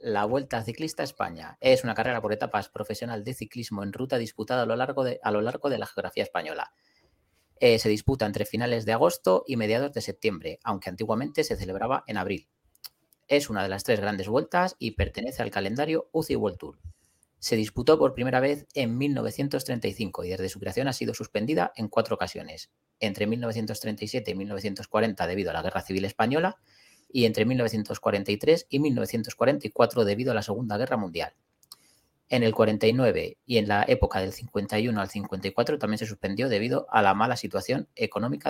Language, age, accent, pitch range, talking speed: Spanish, 30-49, Spanish, 105-130 Hz, 180 wpm